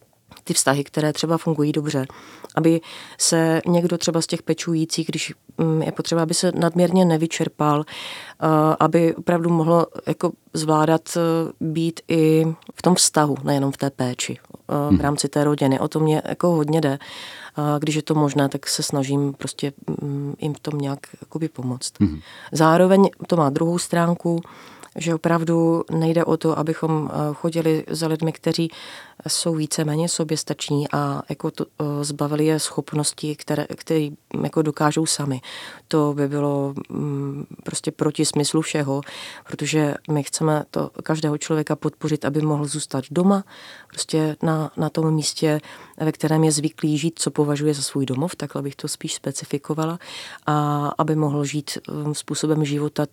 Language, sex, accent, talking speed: Czech, female, native, 145 wpm